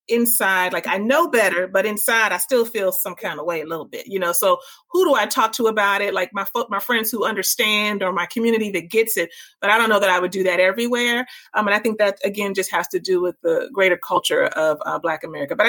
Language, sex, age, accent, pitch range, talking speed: English, female, 30-49, American, 175-215 Hz, 260 wpm